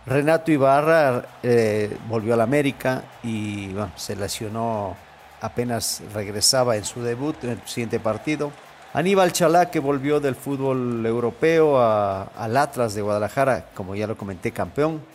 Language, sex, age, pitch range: English, male, 50-69, 110-145 Hz